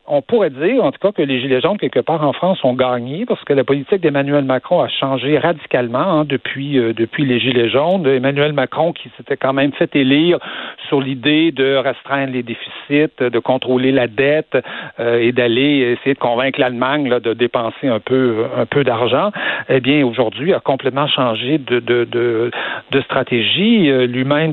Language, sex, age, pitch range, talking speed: French, male, 60-79, 125-155 Hz, 190 wpm